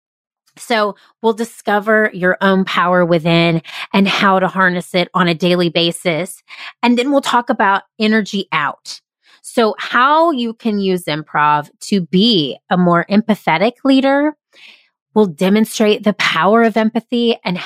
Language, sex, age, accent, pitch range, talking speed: English, female, 30-49, American, 185-240 Hz, 145 wpm